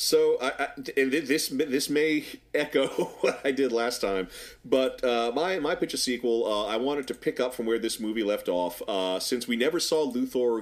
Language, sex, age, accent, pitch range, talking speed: English, male, 40-59, American, 105-145 Hz, 210 wpm